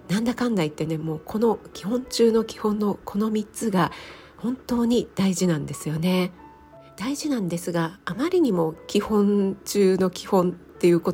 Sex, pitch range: female, 165-205 Hz